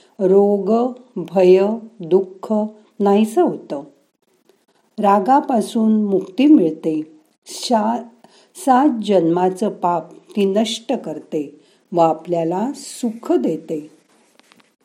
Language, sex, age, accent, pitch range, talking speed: Marathi, female, 50-69, native, 170-230 Hz, 40 wpm